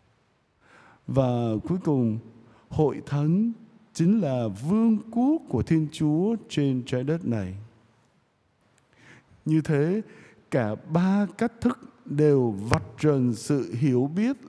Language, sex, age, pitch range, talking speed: Vietnamese, male, 60-79, 120-170 Hz, 115 wpm